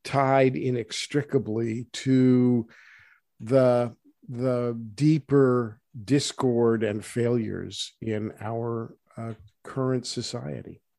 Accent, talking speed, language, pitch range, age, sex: American, 75 wpm, English, 115-130 Hz, 50-69, male